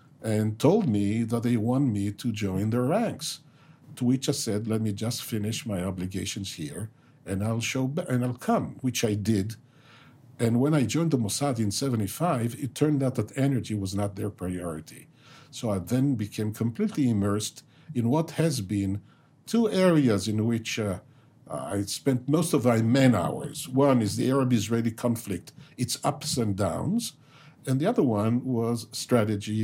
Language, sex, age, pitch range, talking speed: English, male, 50-69, 105-140 Hz, 170 wpm